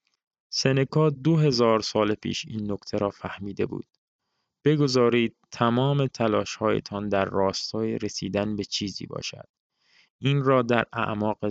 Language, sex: Persian, male